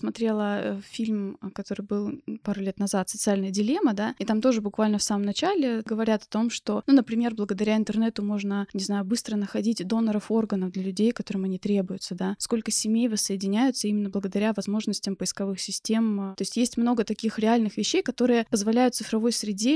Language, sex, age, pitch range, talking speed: Russian, female, 20-39, 210-245 Hz, 175 wpm